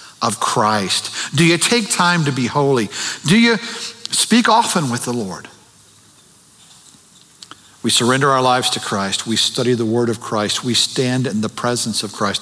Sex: male